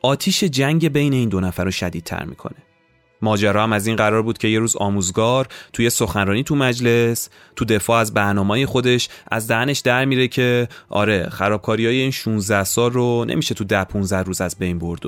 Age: 30-49